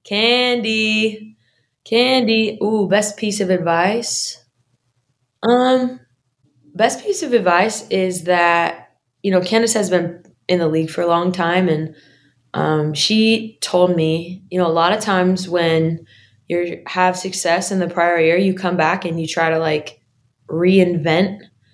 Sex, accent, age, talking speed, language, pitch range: female, American, 20-39, 150 wpm, English, 160-190 Hz